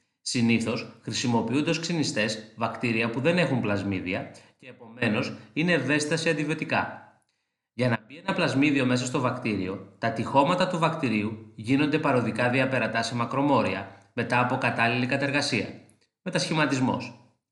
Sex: male